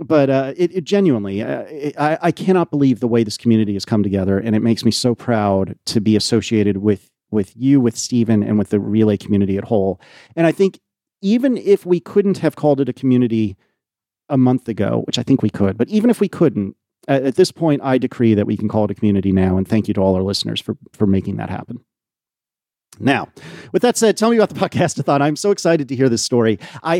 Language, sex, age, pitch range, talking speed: English, male, 40-59, 110-160 Hz, 240 wpm